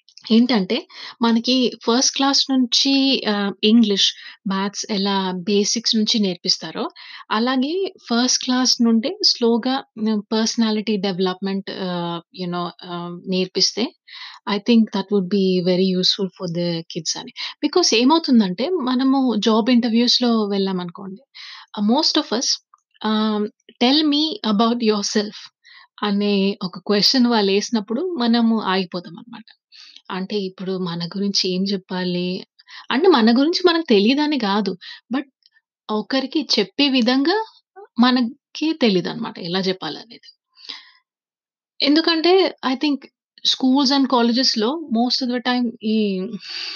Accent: native